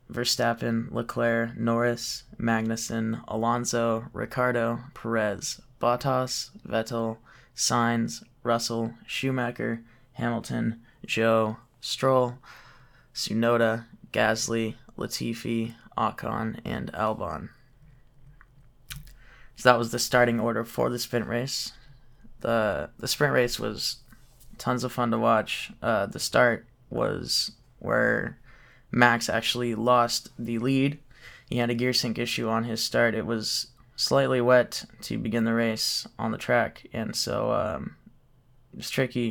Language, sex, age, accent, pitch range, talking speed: English, male, 20-39, American, 115-125 Hz, 120 wpm